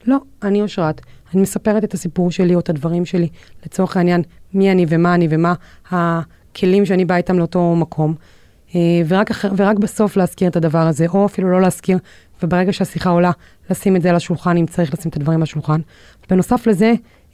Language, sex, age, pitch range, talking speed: Hebrew, female, 30-49, 170-195 Hz, 185 wpm